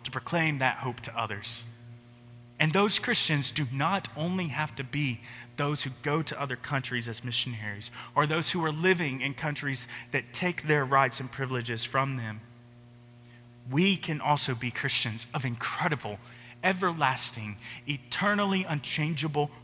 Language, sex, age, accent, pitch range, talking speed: English, male, 30-49, American, 120-190 Hz, 145 wpm